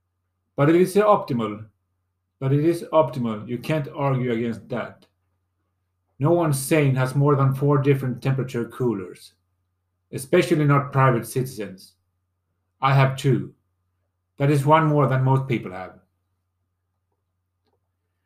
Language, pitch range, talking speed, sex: English, 95-150 Hz, 125 wpm, male